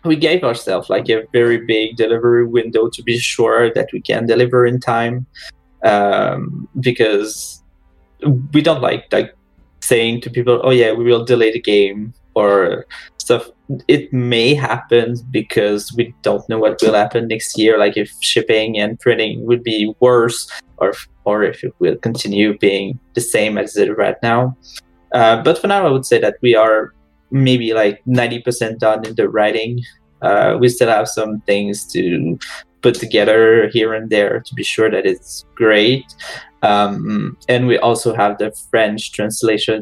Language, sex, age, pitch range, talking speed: English, male, 20-39, 105-125 Hz, 170 wpm